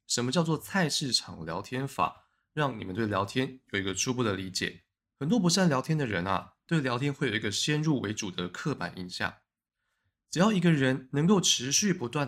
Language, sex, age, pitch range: Chinese, male, 20-39, 105-165 Hz